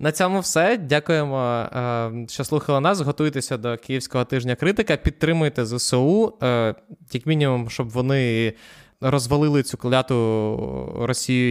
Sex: male